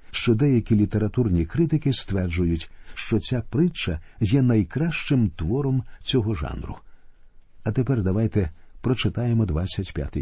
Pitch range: 90-130 Hz